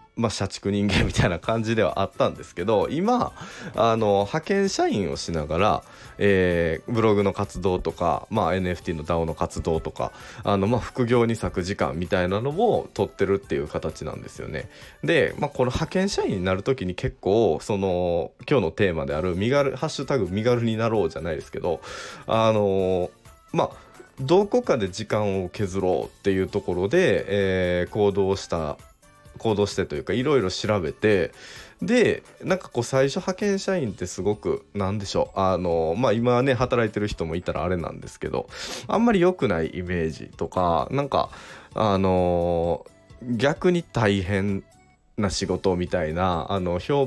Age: 20-39